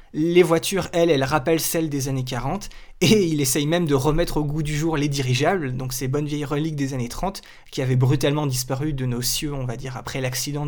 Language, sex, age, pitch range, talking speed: French, male, 20-39, 135-165 Hz, 230 wpm